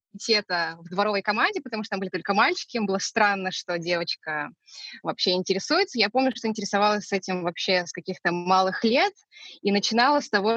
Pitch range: 185-240 Hz